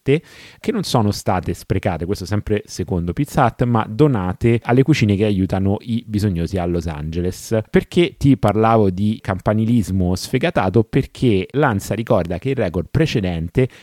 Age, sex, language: 30-49, male, Italian